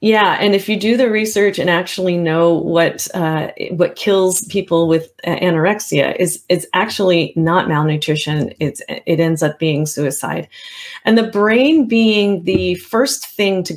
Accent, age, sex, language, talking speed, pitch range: American, 30-49, female, English, 155 wpm, 170-210 Hz